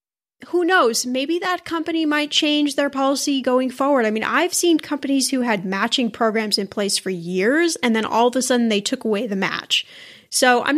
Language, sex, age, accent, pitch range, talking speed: English, female, 10-29, American, 220-285 Hz, 205 wpm